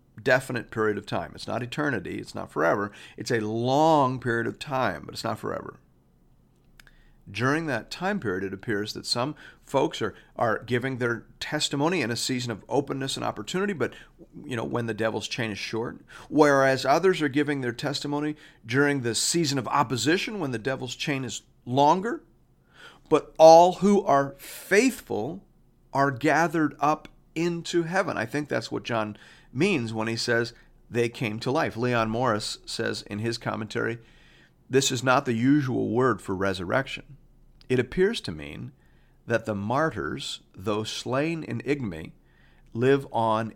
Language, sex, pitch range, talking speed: English, male, 110-145 Hz, 160 wpm